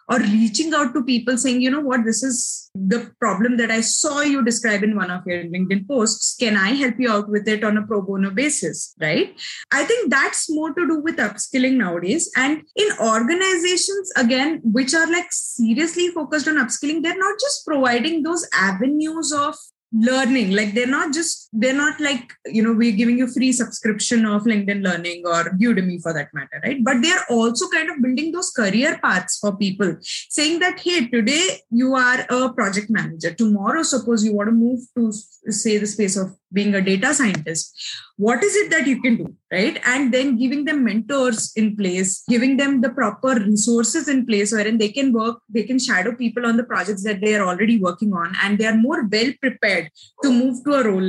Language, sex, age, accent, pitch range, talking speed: English, female, 20-39, Indian, 210-280 Hz, 205 wpm